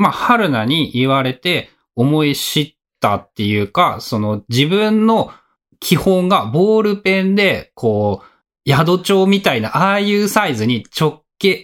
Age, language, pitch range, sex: 20-39, Japanese, 130-205 Hz, male